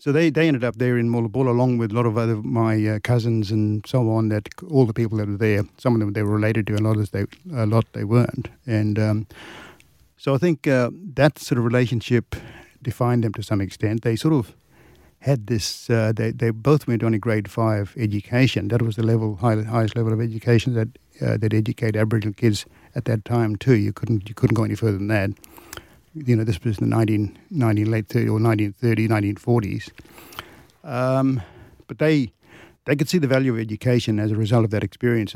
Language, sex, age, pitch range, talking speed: English, male, 50-69, 110-120 Hz, 215 wpm